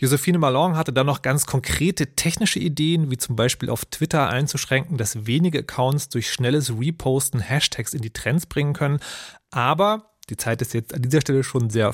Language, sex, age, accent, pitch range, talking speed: German, male, 30-49, German, 125-160 Hz, 185 wpm